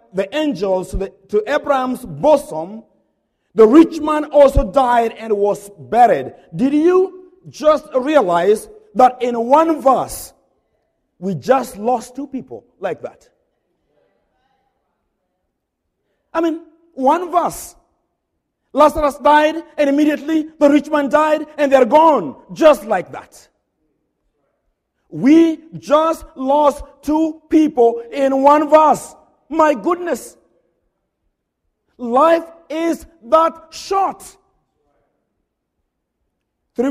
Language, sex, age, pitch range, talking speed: English, male, 50-69, 225-300 Hz, 100 wpm